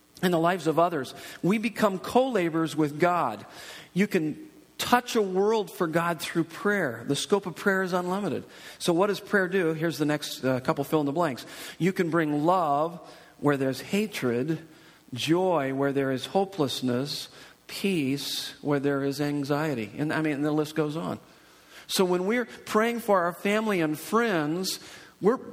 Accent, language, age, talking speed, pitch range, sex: American, English, 50-69, 175 wpm, 145-200 Hz, male